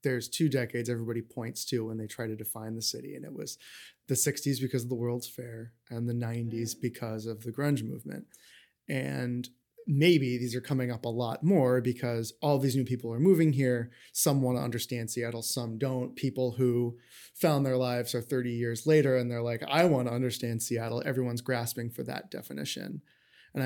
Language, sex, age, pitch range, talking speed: English, male, 20-39, 120-135 Hz, 200 wpm